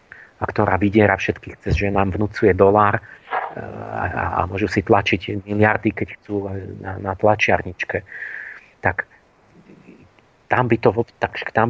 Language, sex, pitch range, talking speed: Slovak, male, 100-120 Hz, 115 wpm